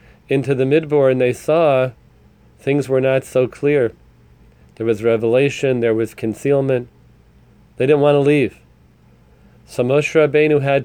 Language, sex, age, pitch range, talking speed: English, male, 30-49, 100-140 Hz, 145 wpm